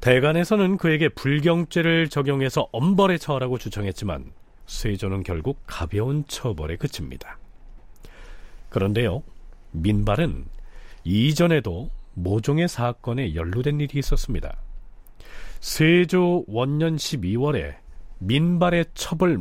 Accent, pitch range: native, 100-165 Hz